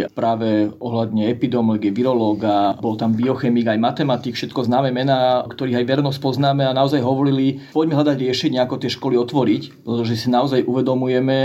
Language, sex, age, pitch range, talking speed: Slovak, male, 40-59, 120-150 Hz, 155 wpm